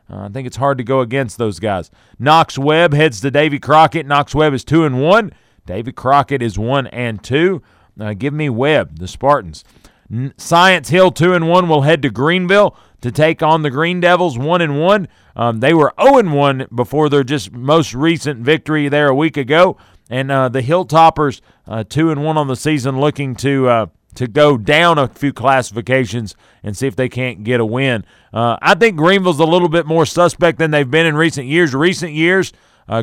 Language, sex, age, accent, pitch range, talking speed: English, male, 40-59, American, 115-155 Hz, 205 wpm